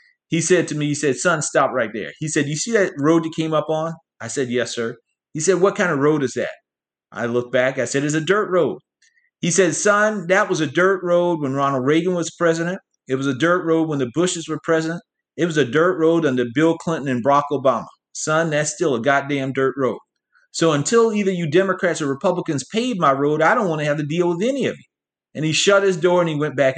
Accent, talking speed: American, 250 wpm